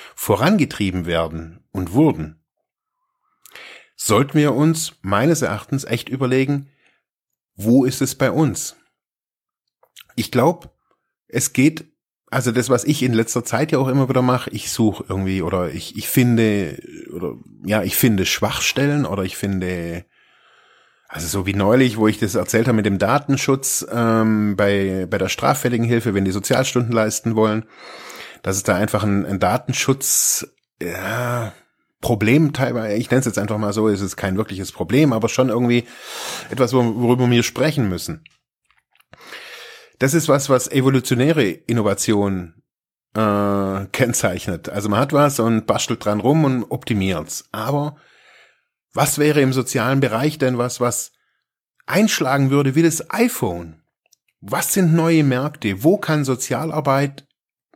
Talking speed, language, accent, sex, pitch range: 145 wpm, German, German, male, 105-135 Hz